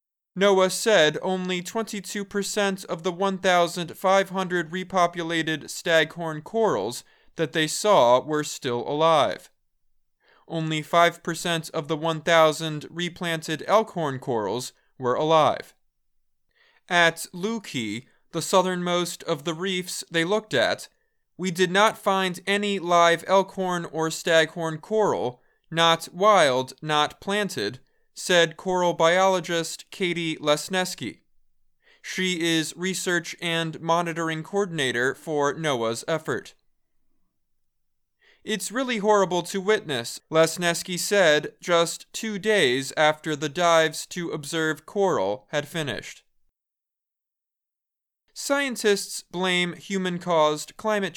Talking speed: 100 wpm